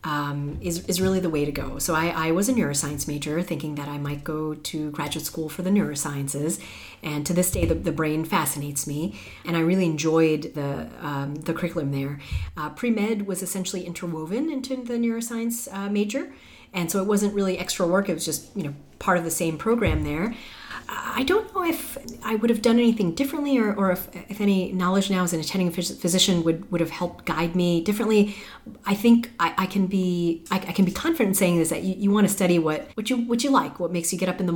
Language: English